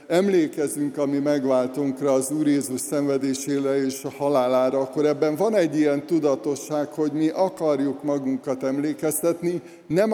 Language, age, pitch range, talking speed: Hungarian, 60-79, 130-155 Hz, 130 wpm